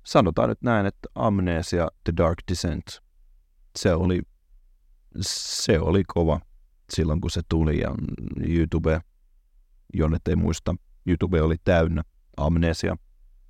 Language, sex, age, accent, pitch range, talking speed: Finnish, male, 30-49, native, 75-90 Hz, 115 wpm